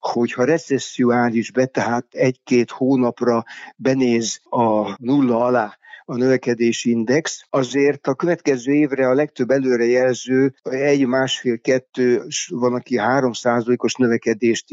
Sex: male